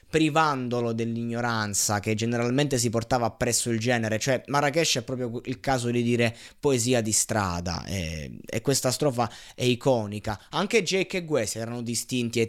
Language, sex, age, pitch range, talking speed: Italian, male, 20-39, 110-135 Hz, 160 wpm